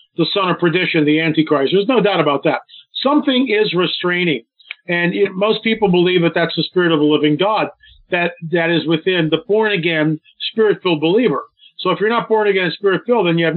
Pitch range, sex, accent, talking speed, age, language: 165-220 Hz, male, American, 195 wpm, 50-69, English